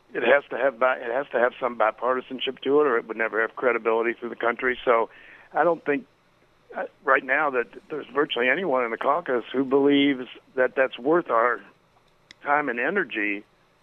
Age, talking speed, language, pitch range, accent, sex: 60-79, 195 wpm, English, 120-135 Hz, American, male